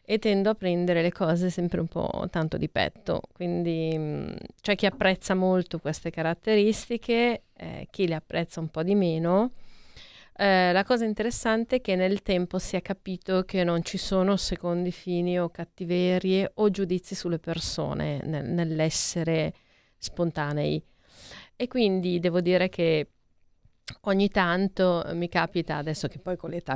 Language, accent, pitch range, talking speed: Italian, native, 170-195 Hz, 150 wpm